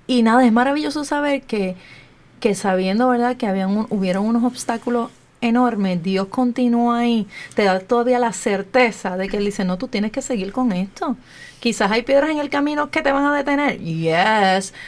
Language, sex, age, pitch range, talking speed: Spanish, female, 30-49, 190-235 Hz, 180 wpm